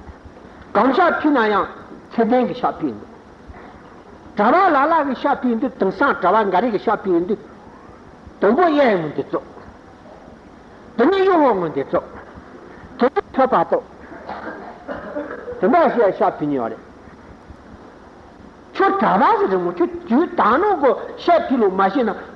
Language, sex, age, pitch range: Italian, male, 60-79, 195-315 Hz